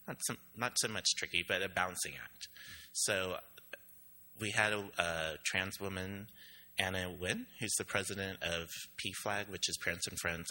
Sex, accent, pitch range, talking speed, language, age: male, American, 85-100 Hz, 160 wpm, English, 30-49